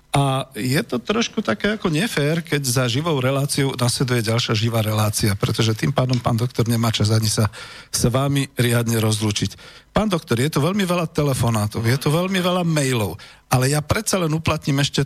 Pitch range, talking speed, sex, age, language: 115-150 Hz, 185 wpm, male, 50-69, Slovak